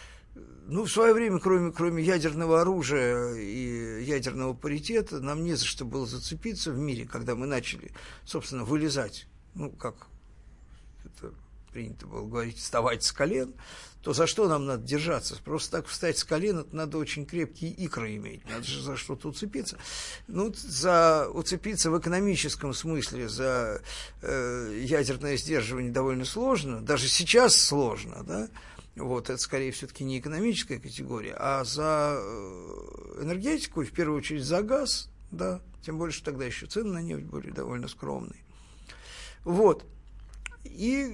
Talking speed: 145 wpm